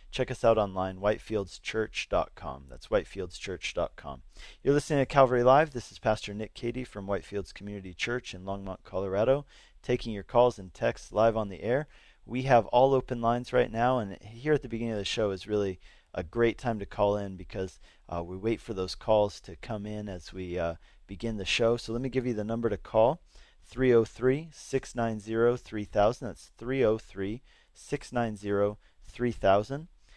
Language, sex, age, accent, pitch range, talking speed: English, male, 40-59, American, 100-120 Hz, 165 wpm